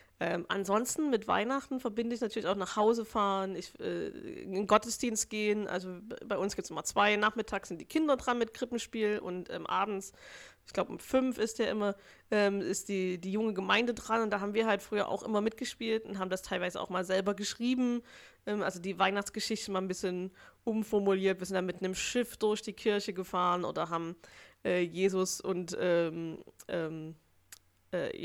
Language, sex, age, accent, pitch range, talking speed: German, female, 20-39, German, 185-215 Hz, 195 wpm